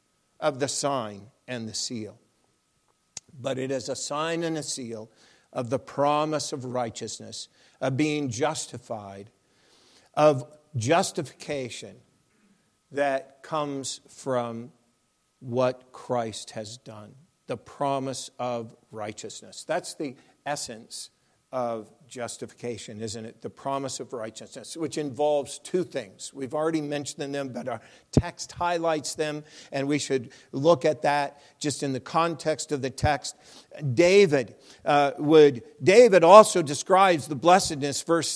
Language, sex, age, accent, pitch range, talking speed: English, male, 50-69, American, 125-165 Hz, 125 wpm